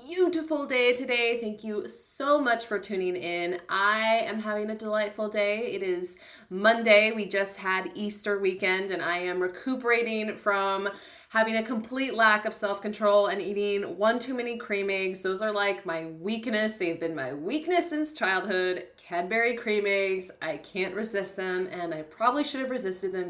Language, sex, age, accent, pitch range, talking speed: English, female, 20-39, American, 190-275 Hz, 175 wpm